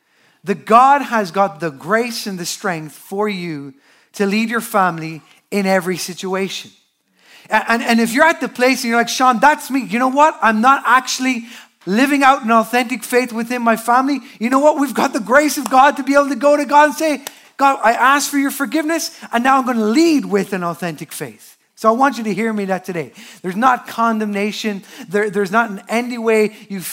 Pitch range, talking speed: 195-260 Hz, 220 wpm